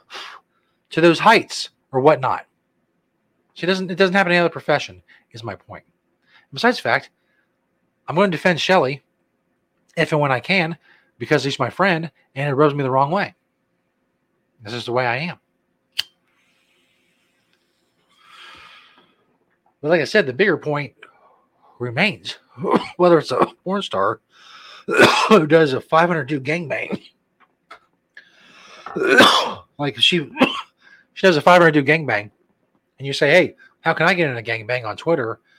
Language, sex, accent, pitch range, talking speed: English, male, American, 140-180 Hz, 145 wpm